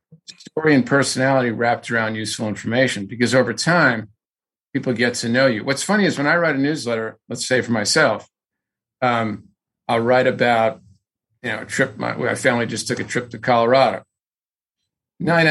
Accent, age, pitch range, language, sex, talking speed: American, 50-69, 115-140 Hz, English, male, 175 wpm